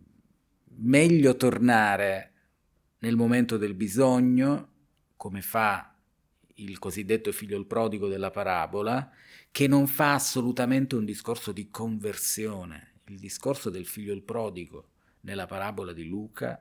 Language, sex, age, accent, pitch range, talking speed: Italian, male, 40-59, native, 95-120 Hz, 120 wpm